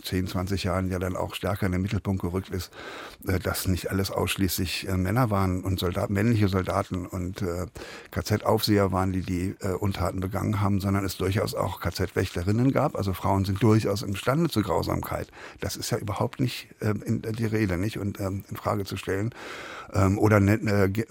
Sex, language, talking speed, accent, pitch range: male, German, 170 wpm, German, 95-105 Hz